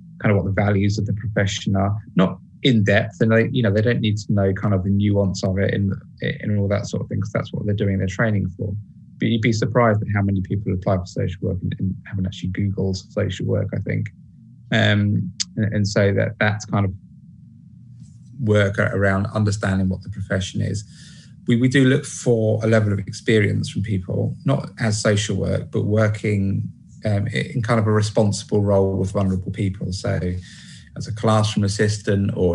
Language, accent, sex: English, British, male